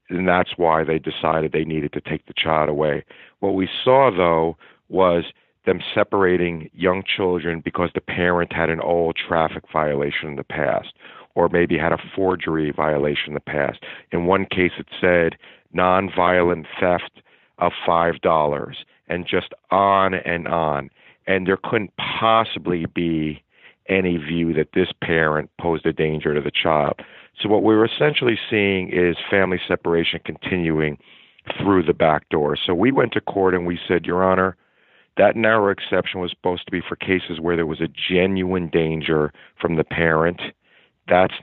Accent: American